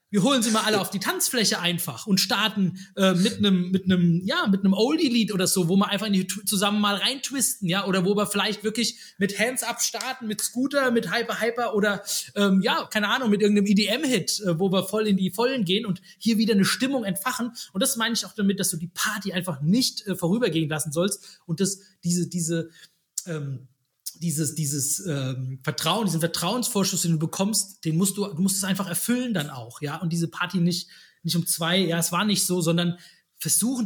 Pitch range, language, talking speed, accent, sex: 170-210 Hz, German, 220 wpm, German, male